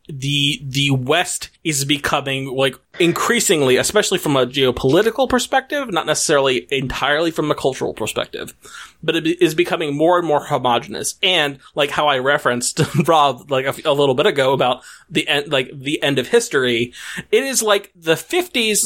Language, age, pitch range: English, 30-49, 140-205 Hz